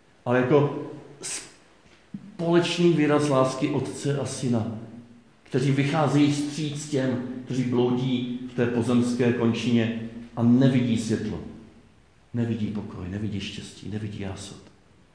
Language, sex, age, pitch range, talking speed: Czech, male, 50-69, 105-135 Hz, 105 wpm